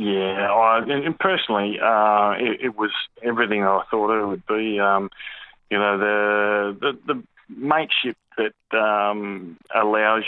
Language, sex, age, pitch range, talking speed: English, male, 20-39, 100-115 Hz, 140 wpm